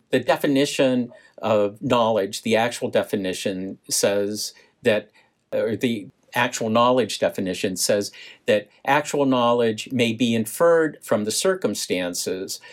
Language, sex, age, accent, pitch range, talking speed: English, male, 50-69, American, 115-155 Hz, 115 wpm